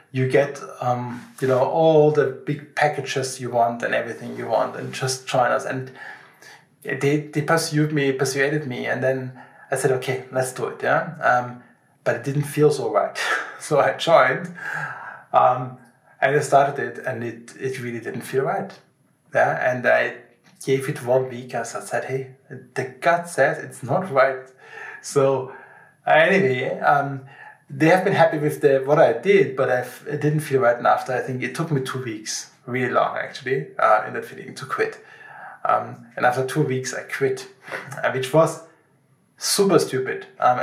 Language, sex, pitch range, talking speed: English, male, 130-150 Hz, 180 wpm